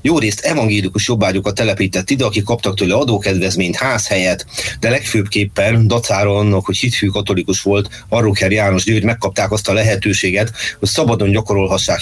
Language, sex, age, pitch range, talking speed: Hungarian, male, 30-49, 95-110 Hz, 150 wpm